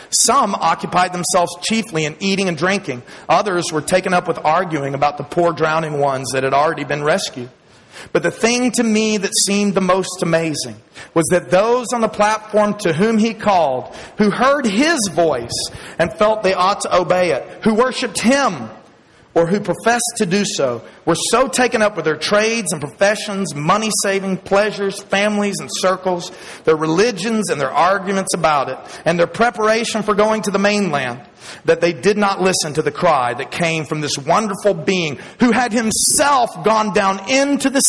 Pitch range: 160-215 Hz